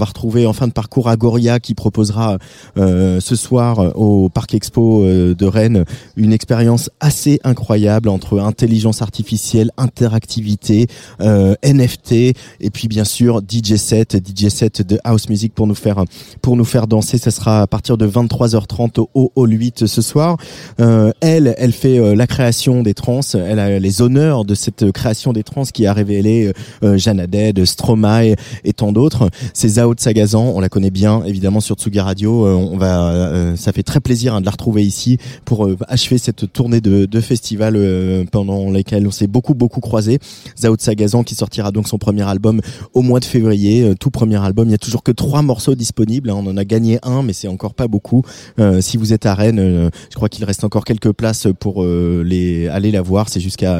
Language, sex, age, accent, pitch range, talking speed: French, male, 30-49, French, 100-120 Hz, 195 wpm